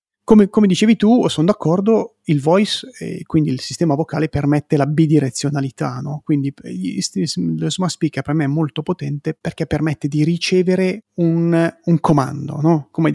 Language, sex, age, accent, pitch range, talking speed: Italian, male, 30-49, native, 145-185 Hz, 170 wpm